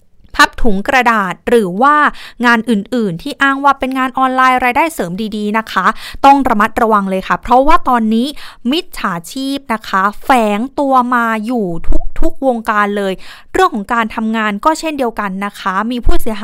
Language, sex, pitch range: Thai, female, 205-265 Hz